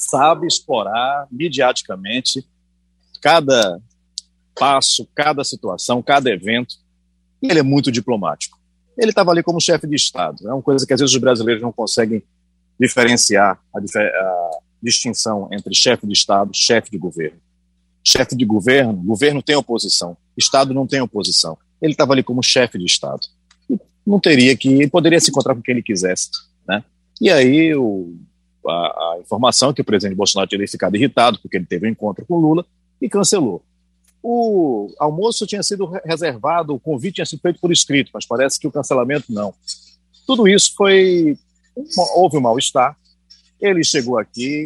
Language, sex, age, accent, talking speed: Portuguese, male, 40-59, Brazilian, 165 wpm